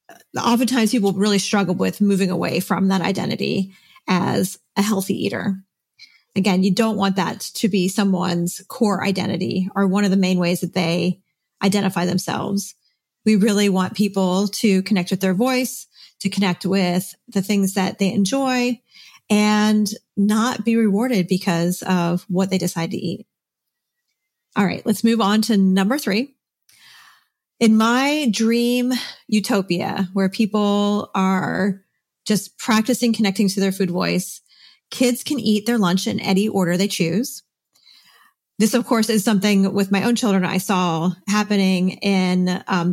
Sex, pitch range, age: female, 185-220 Hz, 40-59